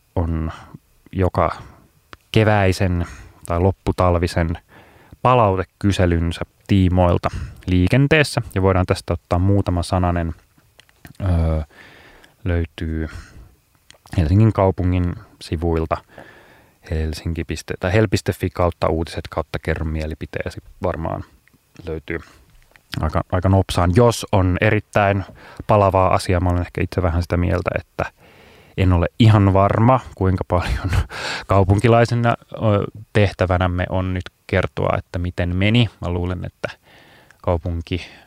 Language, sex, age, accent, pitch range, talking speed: Finnish, male, 30-49, native, 85-100 Hz, 95 wpm